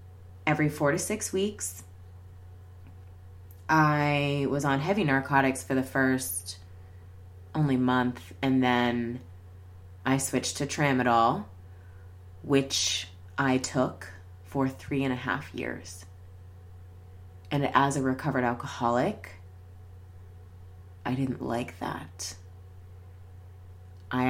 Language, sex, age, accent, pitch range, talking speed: English, female, 20-39, American, 90-135 Hz, 100 wpm